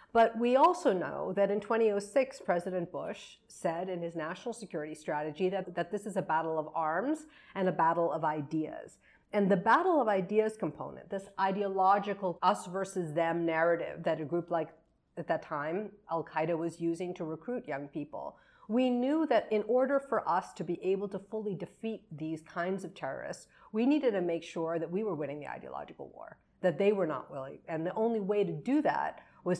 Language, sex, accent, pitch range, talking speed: English, female, American, 160-205 Hz, 195 wpm